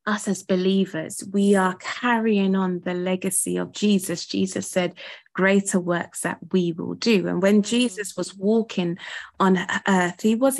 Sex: female